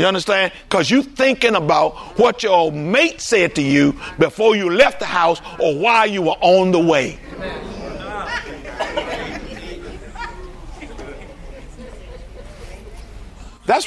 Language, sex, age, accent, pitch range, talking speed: English, male, 50-69, American, 205-270 Hz, 110 wpm